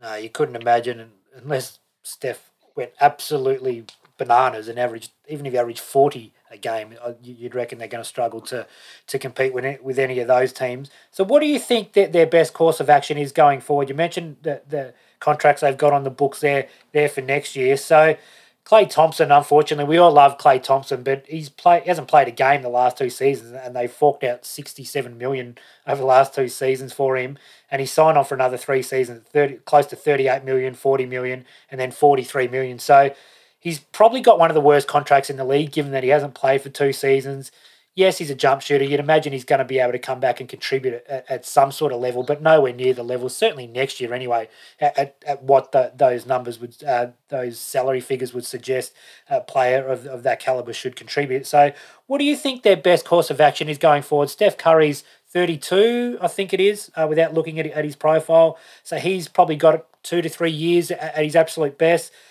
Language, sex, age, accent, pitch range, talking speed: English, male, 20-39, Australian, 130-165 Hz, 220 wpm